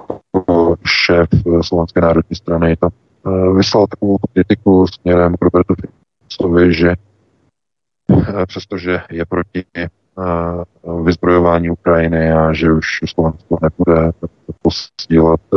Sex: male